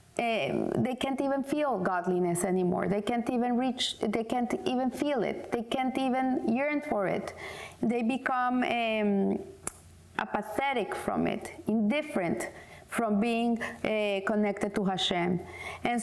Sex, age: female, 30-49